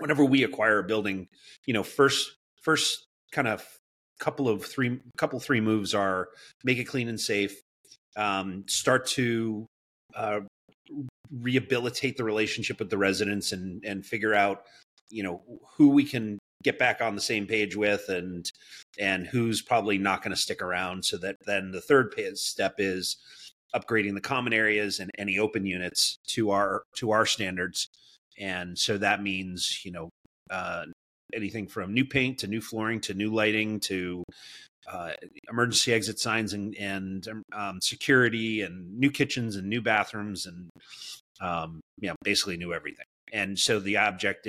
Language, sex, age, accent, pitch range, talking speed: English, male, 30-49, American, 95-120 Hz, 165 wpm